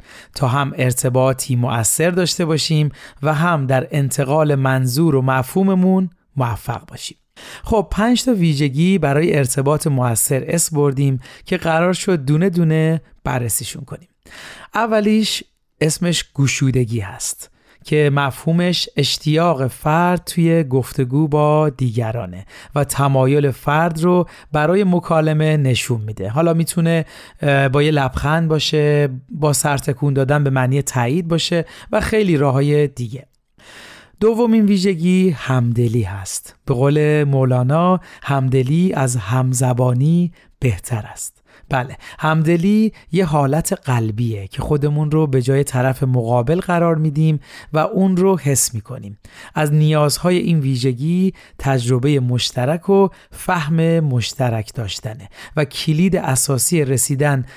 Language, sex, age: Persian, male, 40-59